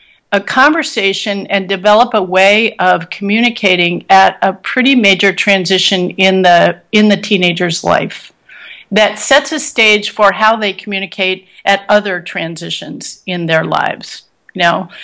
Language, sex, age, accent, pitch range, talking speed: English, female, 50-69, American, 190-225 Hz, 135 wpm